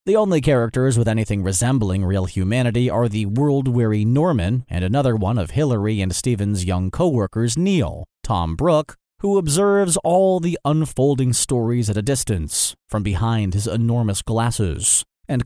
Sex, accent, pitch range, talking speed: male, American, 110-150 Hz, 150 wpm